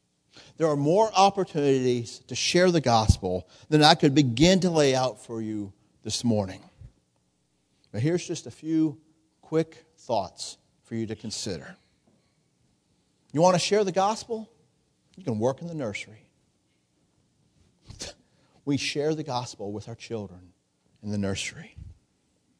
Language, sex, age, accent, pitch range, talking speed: English, male, 50-69, American, 105-160 Hz, 140 wpm